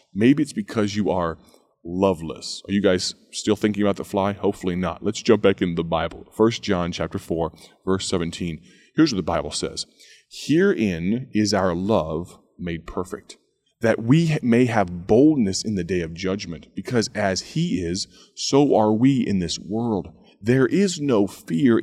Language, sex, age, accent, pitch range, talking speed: English, male, 20-39, American, 90-115 Hz, 175 wpm